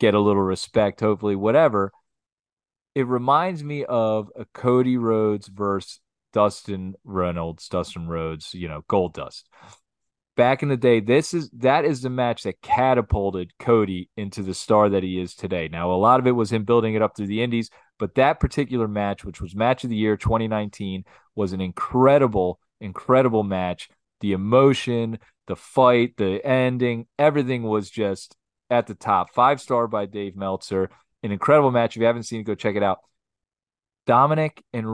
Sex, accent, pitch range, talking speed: male, American, 100-125 Hz, 175 wpm